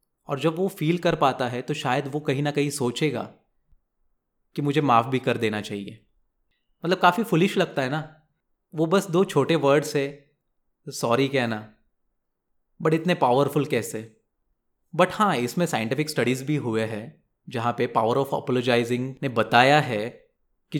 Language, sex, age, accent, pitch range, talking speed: Hindi, male, 30-49, native, 120-155 Hz, 160 wpm